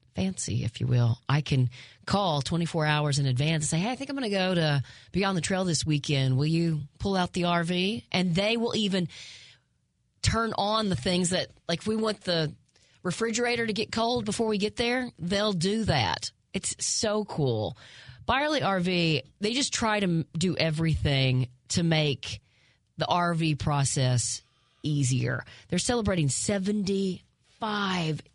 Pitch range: 130-190 Hz